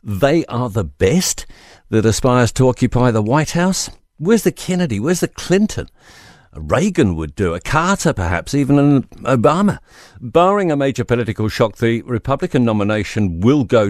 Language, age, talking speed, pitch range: English, 50-69, 155 wpm, 100-135 Hz